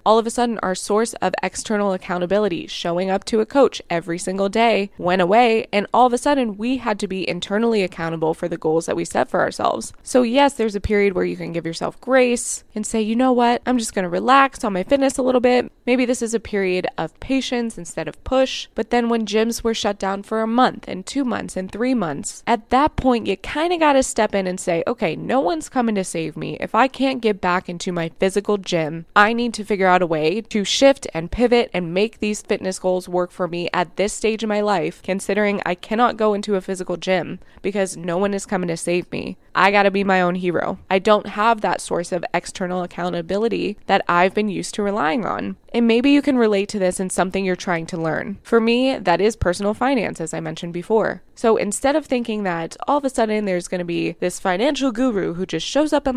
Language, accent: English, American